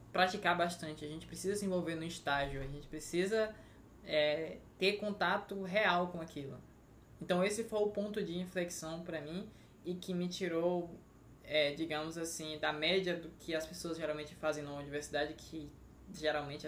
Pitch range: 150-180 Hz